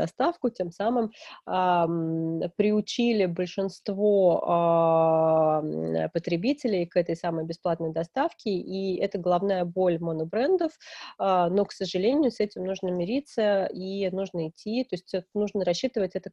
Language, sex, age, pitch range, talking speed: Russian, female, 30-49, 165-200 Hz, 125 wpm